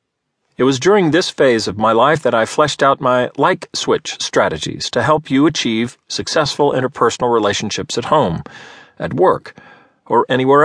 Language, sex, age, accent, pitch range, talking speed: English, male, 40-59, American, 120-150 Hz, 160 wpm